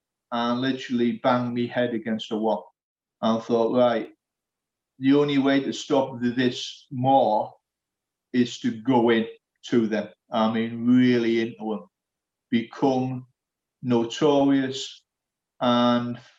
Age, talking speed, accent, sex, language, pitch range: 40-59, 115 wpm, British, male, English, 115-135 Hz